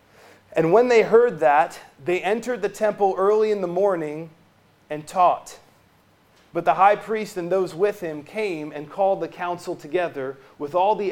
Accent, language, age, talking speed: American, English, 30-49, 175 wpm